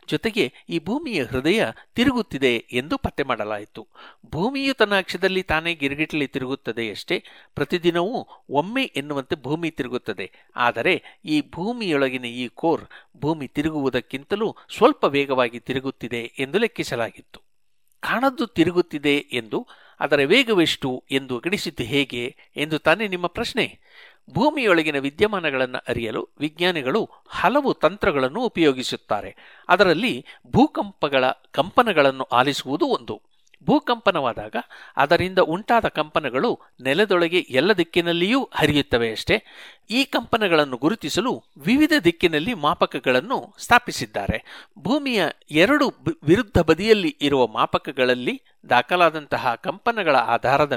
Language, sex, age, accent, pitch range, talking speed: Kannada, male, 60-79, native, 130-195 Hz, 90 wpm